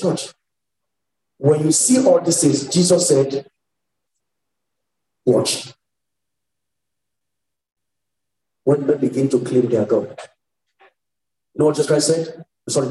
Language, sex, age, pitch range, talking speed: English, male, 50-69, 130-170 Hz, 110 wpm